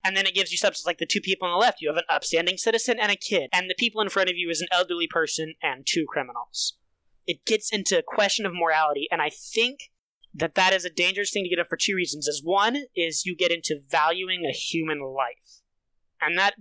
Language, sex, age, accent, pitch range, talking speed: English, male, 20-39, American, 165-205 Hz, 250 wpm